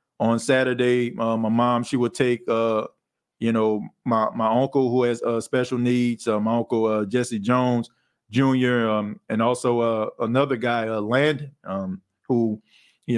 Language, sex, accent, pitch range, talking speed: English, male, American, 115-130 Hz, 175 wpm